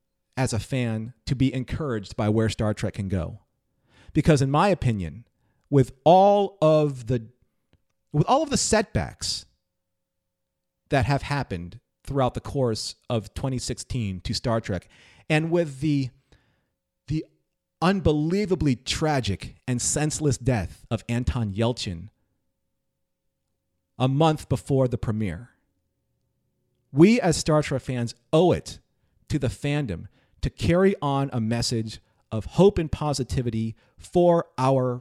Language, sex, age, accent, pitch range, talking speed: English, male, 40-59, American, 110-145 Hz, 125 wpm